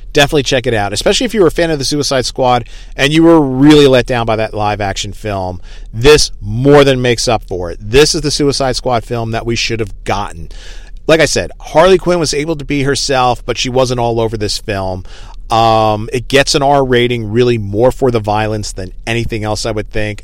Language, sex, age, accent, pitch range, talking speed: English, male, 40-59, American, 100-130 Hz, 230 wpm